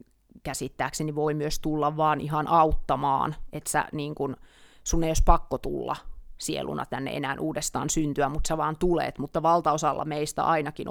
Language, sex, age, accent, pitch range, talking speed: Finnish, female, 30-49, native, 150-180 Hz, 150 wpm